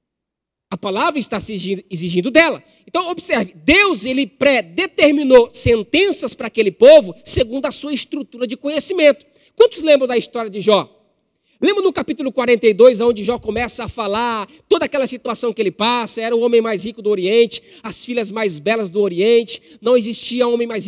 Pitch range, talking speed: 220-285 Hz, 170 wpm